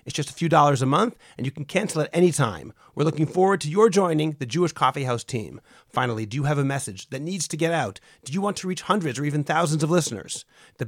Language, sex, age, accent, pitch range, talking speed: English, male, 40-59, American, 135-175 Hz, 265 wpm